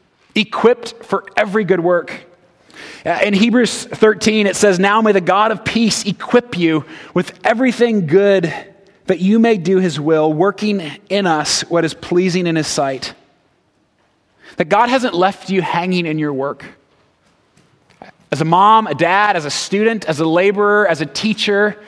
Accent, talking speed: American, 160 wpm